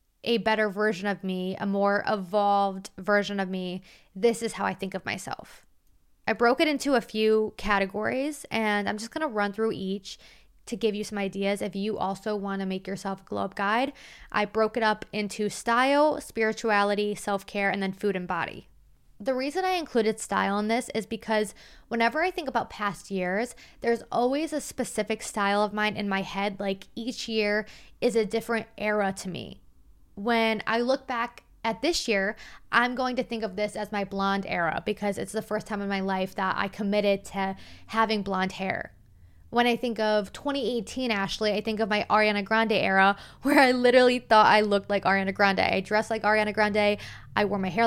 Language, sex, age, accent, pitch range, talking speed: English, female, 20-39, American, 200-230 Hz, 195 wpm